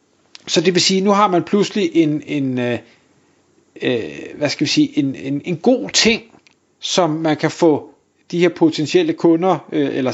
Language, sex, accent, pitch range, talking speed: Danish, male, native, 155-190 Hz, 180 wpm